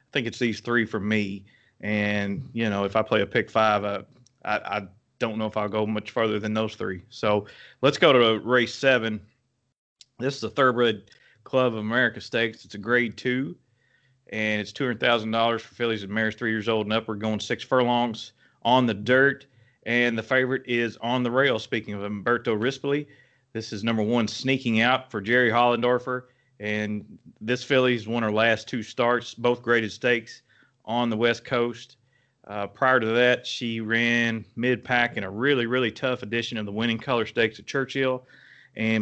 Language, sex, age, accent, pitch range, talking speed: English, male, 30-49, American, 110-130 Hz, 190 wpm